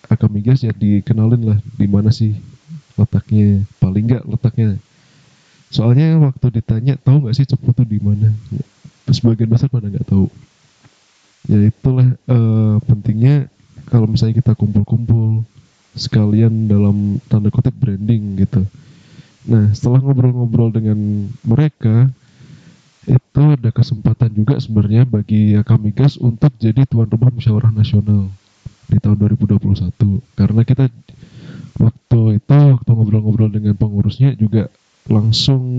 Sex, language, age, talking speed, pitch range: male, Indonesian, 20-39, 120 wpm, 105-130 Hz